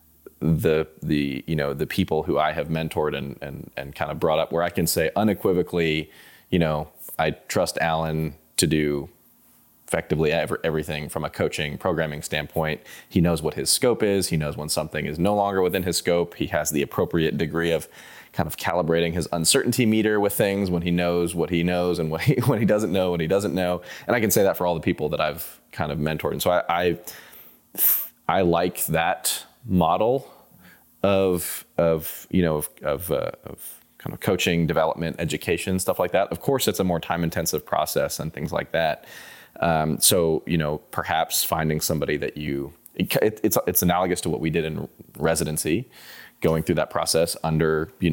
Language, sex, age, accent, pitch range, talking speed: English, male, 20-39, American, 75-90 Hz, 200 wpm